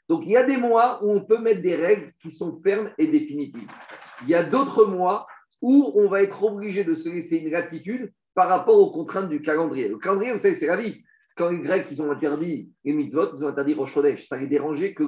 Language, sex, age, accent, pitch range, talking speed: French, male, 50-69, French, 150-235 Hz, 245 wpm